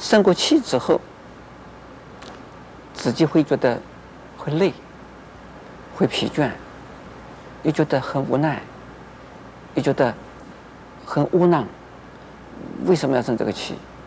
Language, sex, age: Chinese, male, 50-69